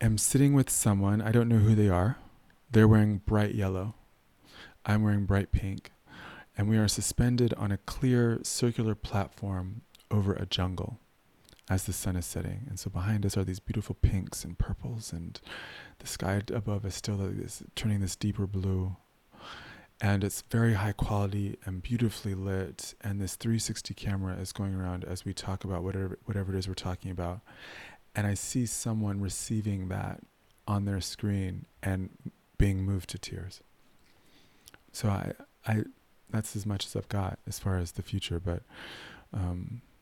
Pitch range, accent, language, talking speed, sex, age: 95-110 Hz, American, English, 165 wpm, male, 30-49